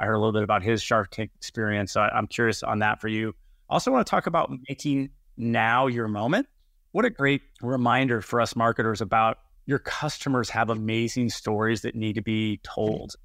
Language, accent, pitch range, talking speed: English, American, 110-140 Hz, 205 wpm